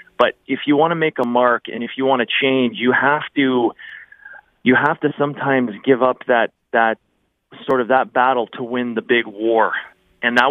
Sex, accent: male, American